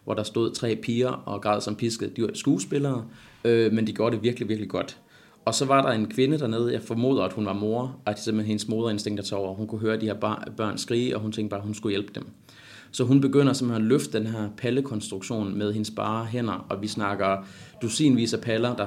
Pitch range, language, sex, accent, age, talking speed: 105-120 Hz, Danish, male, native, 30-49, 250 wpm